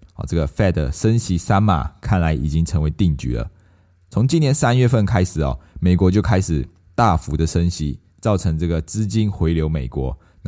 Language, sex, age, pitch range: Chinese, male, 20-39, 80-100 Hz